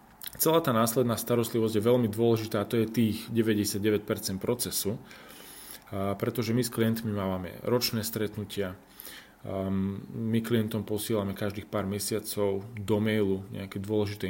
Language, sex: Slovak, male